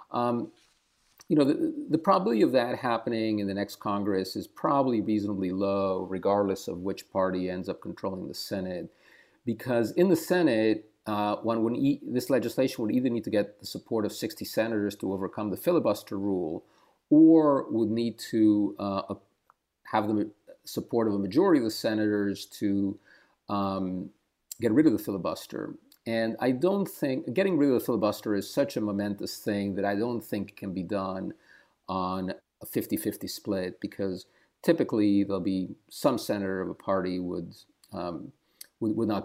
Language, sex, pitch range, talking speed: English, male, 100-115 Hz, 170 wpm